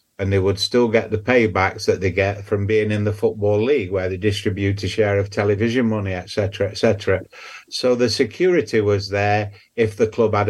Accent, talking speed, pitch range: British, 210 wpm, 95-105 Hz